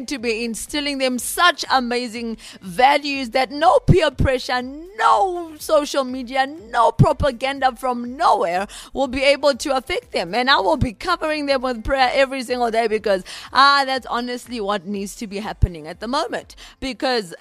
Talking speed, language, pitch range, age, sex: 165 wpm, English, 205-255 Hz, 30-49, female